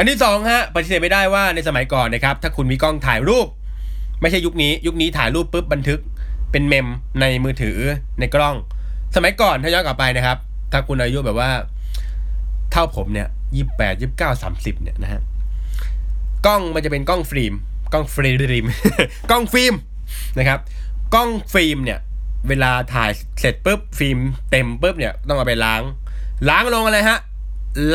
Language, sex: Thai, male